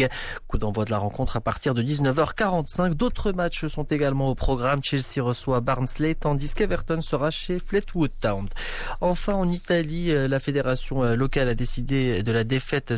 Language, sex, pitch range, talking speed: Arabic, male, 115-145 Hz, 160 wpm